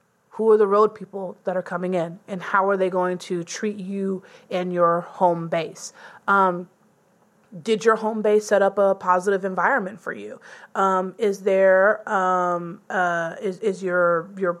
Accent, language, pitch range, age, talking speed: American, English, 180-215 Hz, 30-49, 175 wpm